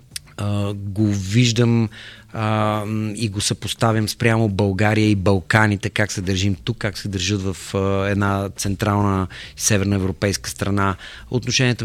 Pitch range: 105-120 Hz